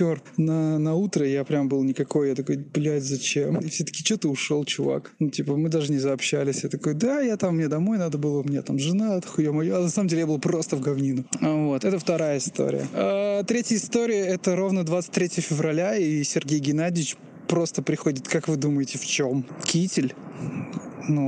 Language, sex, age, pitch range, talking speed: Russian, male, 20-39, 140-175 Hz, 195 wpm